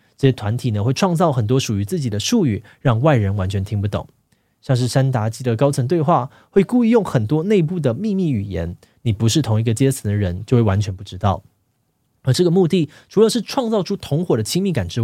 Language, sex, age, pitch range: Chinese, male, 20-39, 110-160 Hz